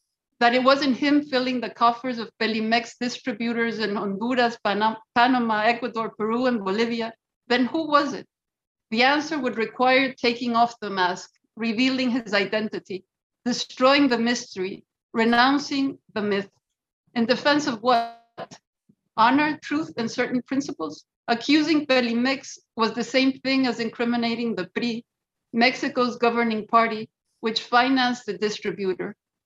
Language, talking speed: English, 130 wpm